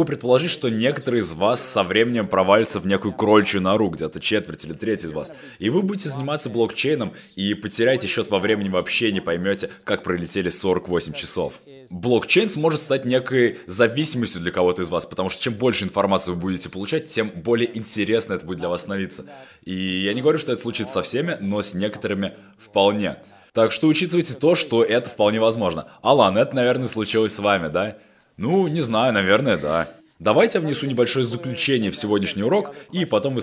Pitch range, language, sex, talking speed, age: 100-130 Hz, Russian, male, 185 wpm, 20-39